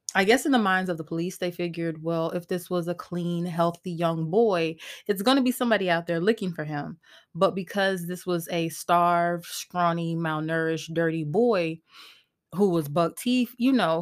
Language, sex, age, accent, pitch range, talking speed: English, female, 20-39, American, 170-215 Hz, 195 wpm